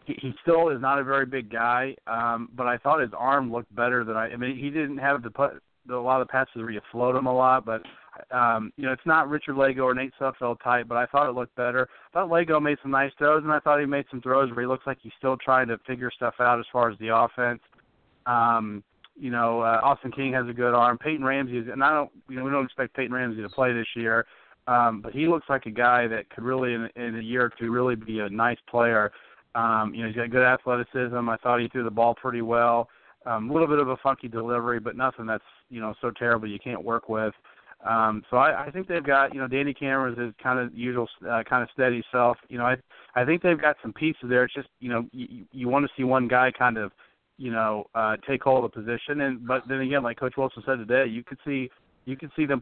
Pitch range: 115-135 Hz